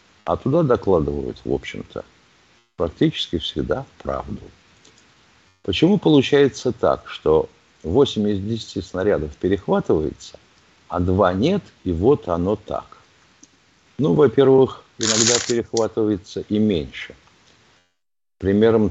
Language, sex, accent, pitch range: Russian, male, native, 90-120 Hz